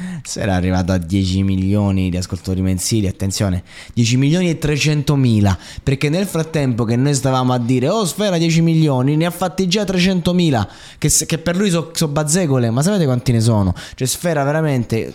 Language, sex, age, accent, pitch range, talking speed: Italian, male, 20-39, native, 95-140 Hz, 185 wpm